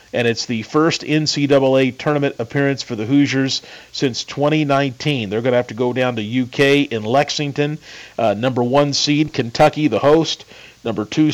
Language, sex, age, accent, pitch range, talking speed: English, male, 40-59, American, 115-145 Hz, 170 wpm